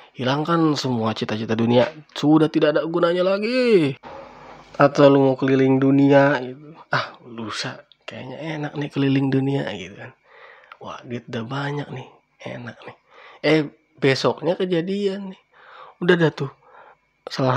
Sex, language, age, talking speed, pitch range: male, Indonesian, 20-39, 130 wpm, 110-140 Hz